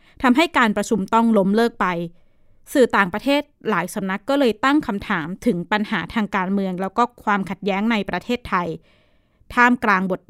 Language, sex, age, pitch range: Thai, female, 20-39, 190-240 Hz